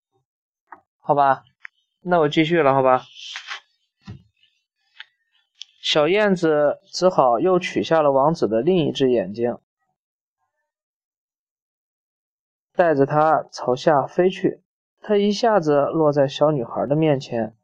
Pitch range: 140-185 Hz